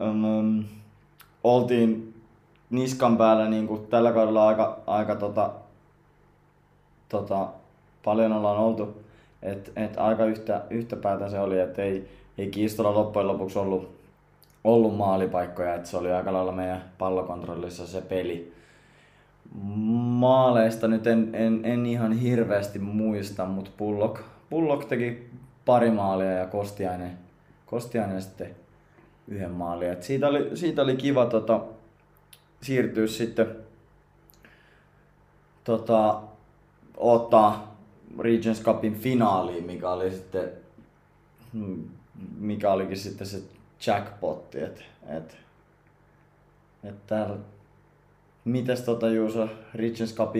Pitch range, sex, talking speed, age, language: 100-115 Hz, male, 100 wpm, 20-39, Finnish